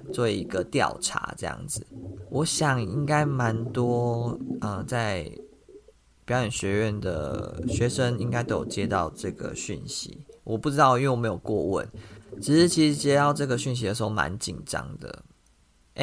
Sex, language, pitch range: male, Chinese, 105-130 Hz